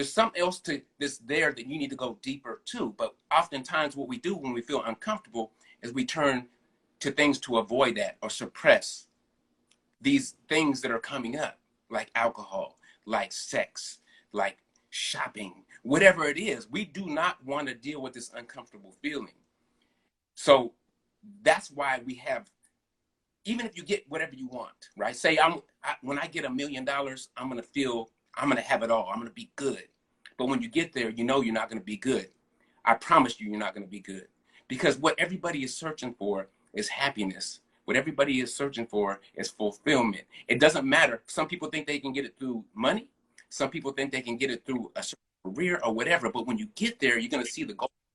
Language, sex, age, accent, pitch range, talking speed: English, male, 30-49, American, 120-175 Hz, 205 wpm